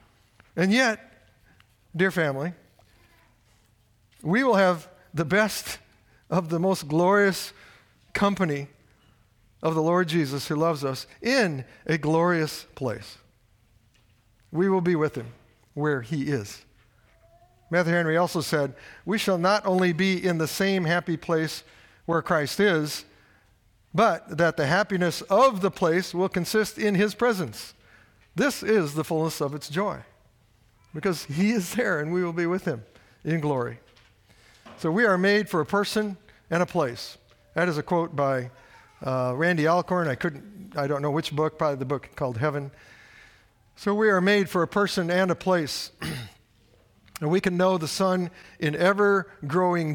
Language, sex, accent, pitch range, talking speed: English, male, American, 120-185 Hz, 155 wpm